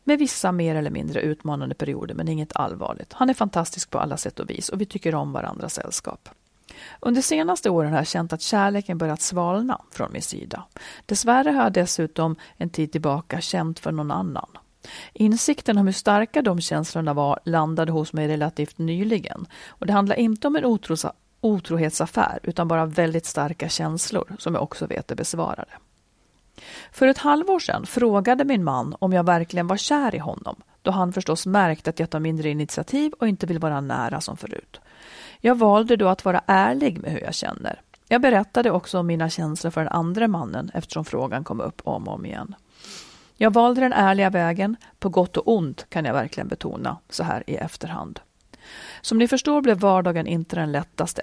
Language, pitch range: Swedish, 165-225 Hz